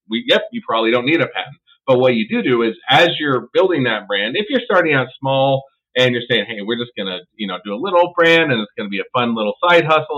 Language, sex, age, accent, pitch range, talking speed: English, male, 40-59, American, 115-155 Hz, 285 wpm